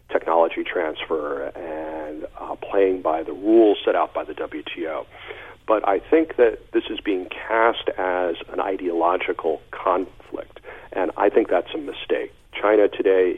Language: English